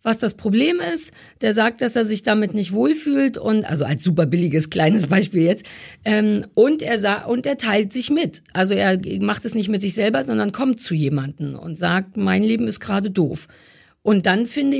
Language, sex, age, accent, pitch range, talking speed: German, female, 50-69, German, 205-240 Hz, 205 wpm